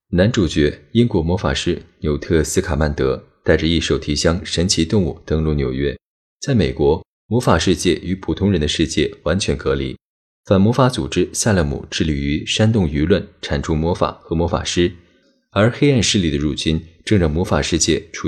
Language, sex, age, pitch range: Chinese, male, 20-39, 75-100 Hz